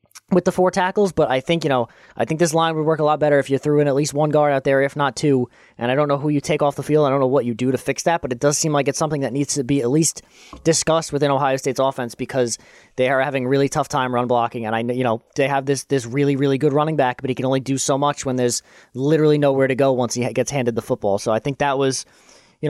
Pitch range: 135-160 Hz